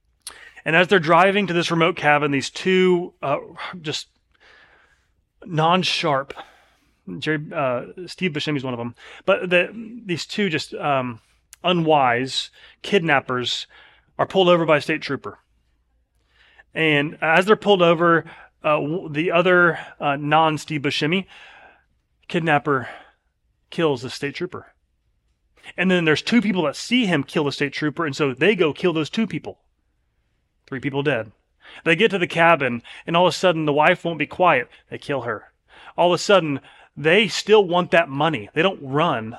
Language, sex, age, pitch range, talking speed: English, male, 30-49, 140-175 Hz, 160 wpm